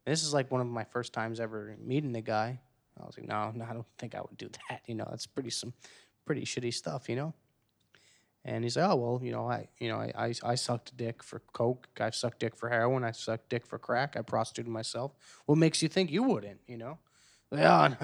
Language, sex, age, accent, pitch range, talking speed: English, male, 20-39, American, 115-140 Hz, 255 wpm